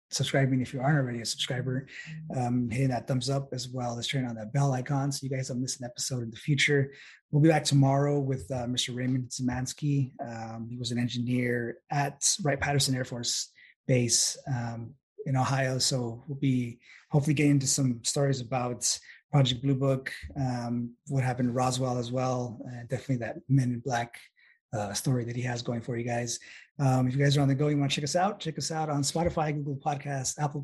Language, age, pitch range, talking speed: English, 30-49, 125-145 Hz, 210 wpm